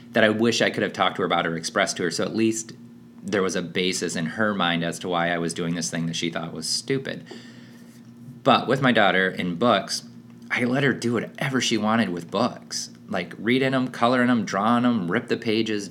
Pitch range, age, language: 85-120 Hz, 30-49, English